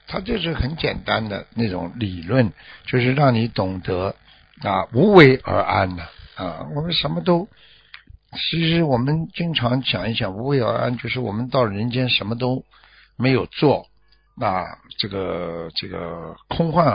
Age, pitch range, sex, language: 60-79, 95-130 Hz, male, Chinese